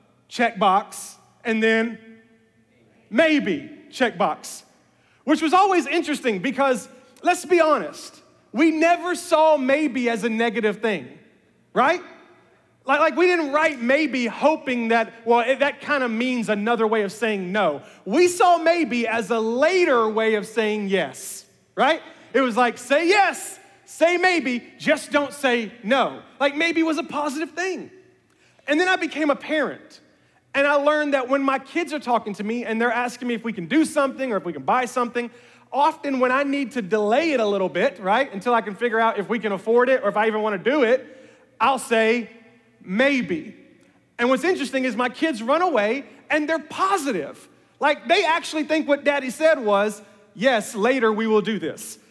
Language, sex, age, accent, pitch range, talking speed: English, male, 30-49, American, 230-310 Hz, 180 wpm